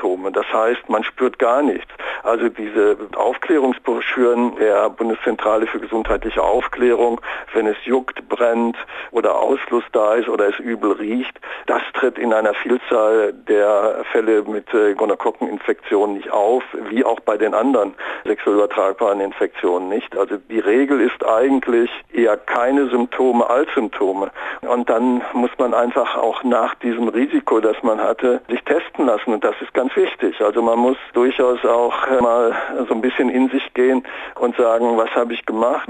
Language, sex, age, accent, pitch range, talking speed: German, male, 50-69, German, 115-130 Hz, 155 wpm